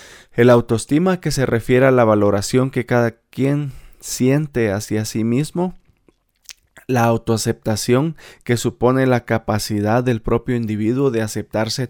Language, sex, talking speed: Spanish, male, 130 wpm